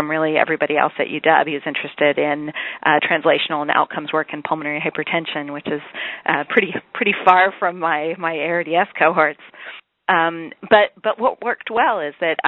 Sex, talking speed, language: female, 170 wpm, English